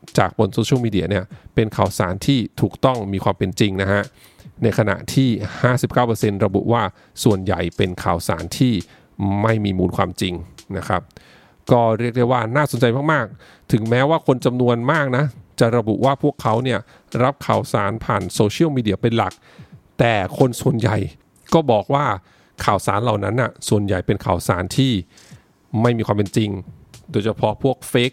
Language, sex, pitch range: English, male, 100-130 Hz